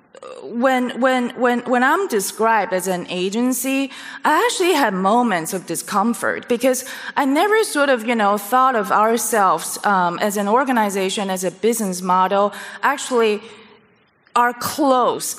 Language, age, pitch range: German, 20-39, 195-255 Hz